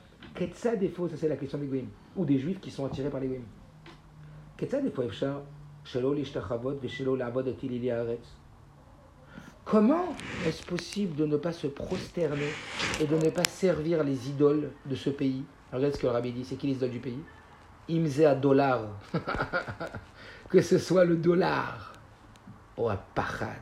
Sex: male